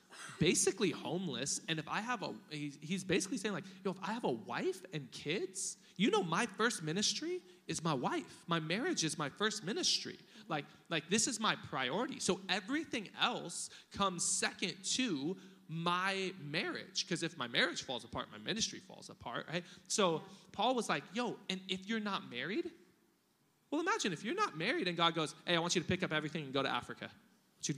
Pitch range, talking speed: 150-200 Hz, 195 wpm